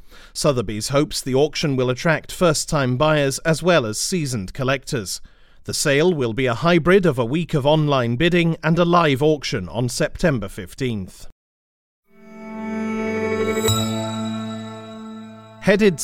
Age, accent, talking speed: 40-59, British, 125 wpm